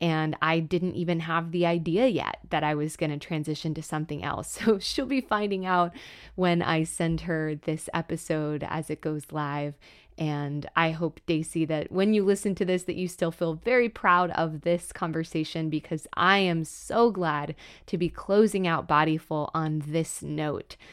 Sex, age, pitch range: female, 20-39, 155-190 Hz